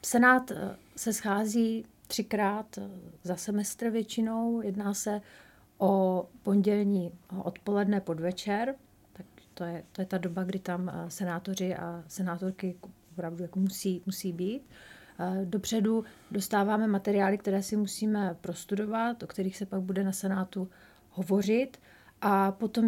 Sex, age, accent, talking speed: female, 40-59, native, 125 wpm